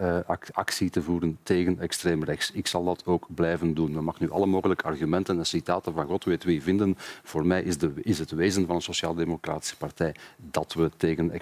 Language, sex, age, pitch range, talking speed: Dutch, male, 40-59, 85-95 Hz, 205 wpm